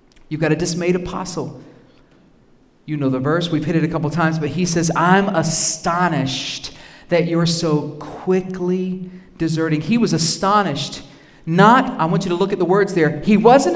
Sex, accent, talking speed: male, American, 175 wpm